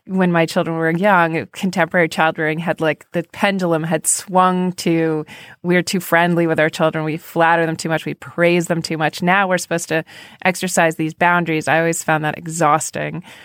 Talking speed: 190 wpm